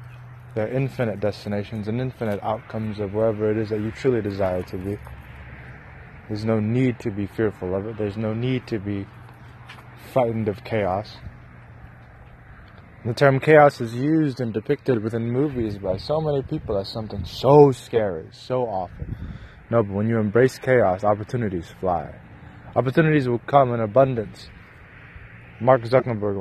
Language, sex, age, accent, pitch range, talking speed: English, male, 20-39, American, 100-125 Hz, 155 wpm